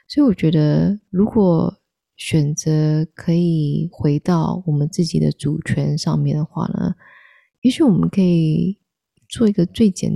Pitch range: 155-190 Hz